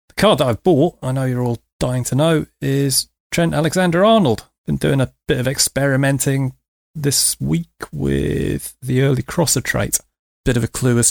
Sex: male